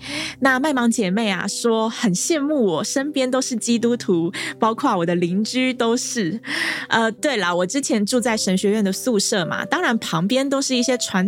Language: Chinese